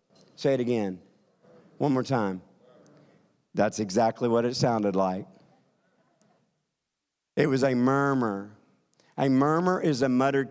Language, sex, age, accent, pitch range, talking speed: English, male, 50-69, American, 105-140 Hz, 120 wpm